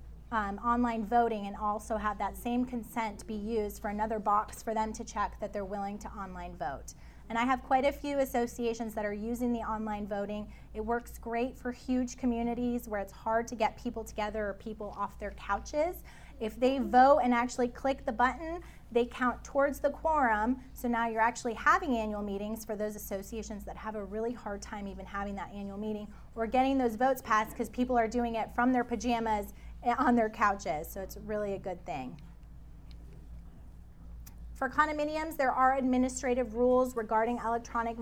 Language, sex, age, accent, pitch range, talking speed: English, female, 30-49, American, 210-250 Hz, 190 wpm